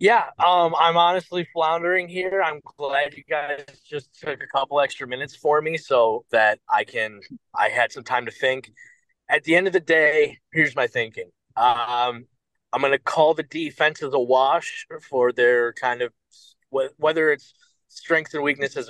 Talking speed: 180 wpm